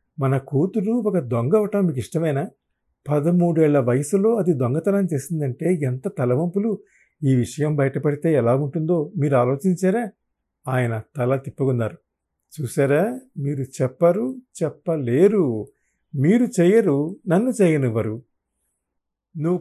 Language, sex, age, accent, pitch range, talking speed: Telugu, male, 50-69, native, 125-175 Hz, 100 wpm